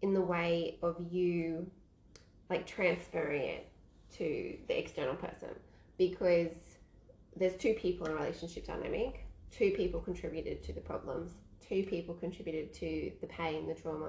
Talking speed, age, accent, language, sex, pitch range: 145 wpm, 20-39, Australian, English, female, 165-190 Hz